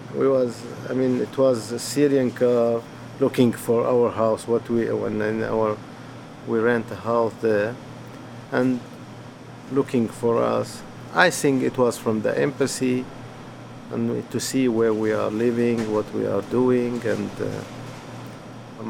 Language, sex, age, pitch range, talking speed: English, male, 50-69, 110-130 Hz, 145 wpm